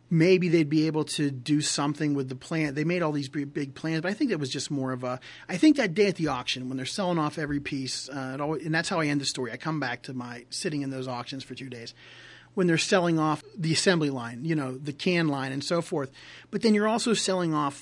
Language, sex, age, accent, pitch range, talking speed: English, male, 30-49, American, 130-165 Hz, 275 wpm